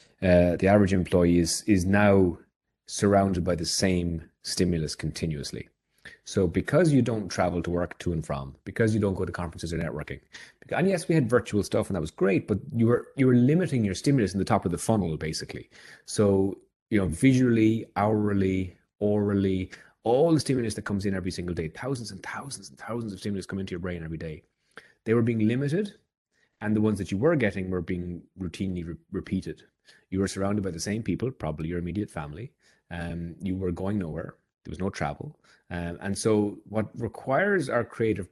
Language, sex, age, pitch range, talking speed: English, male, 30-49, 85-110 Hz, 200 wpm